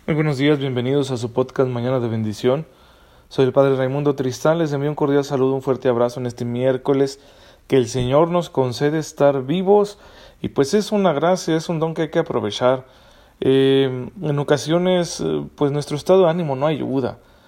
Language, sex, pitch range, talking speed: Spanish, male, 130-155 Hz, 190 wpm